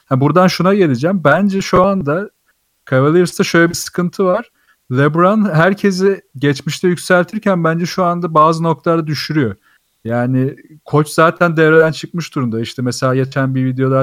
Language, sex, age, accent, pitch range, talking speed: Turkish, male, 40-59, native, 125-165 Hz, 140 wpm